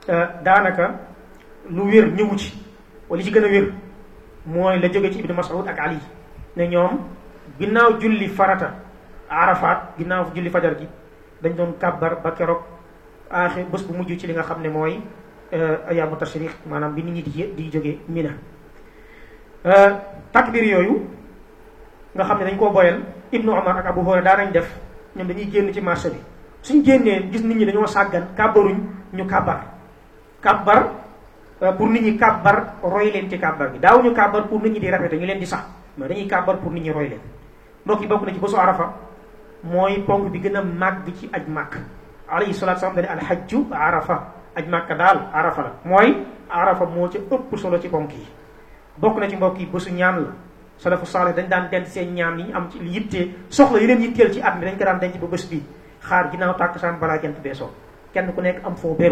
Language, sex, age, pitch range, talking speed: French, male, 30-49, 170-205 Hz, 105 wpm